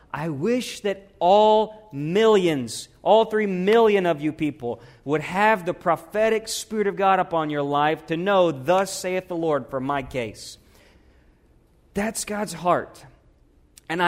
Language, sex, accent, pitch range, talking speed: English, male, American, 120-175 Hz, 145 wpm